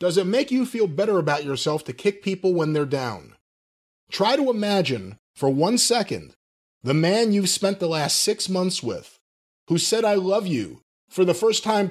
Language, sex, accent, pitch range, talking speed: English, male, American, 155-220 Hz, 190 wpm